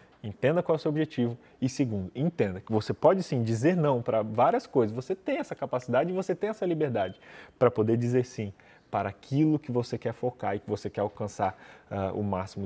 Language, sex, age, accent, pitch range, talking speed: Portuguese, male, 20-39, Brazilian, 110-155 Hz, 210 wpm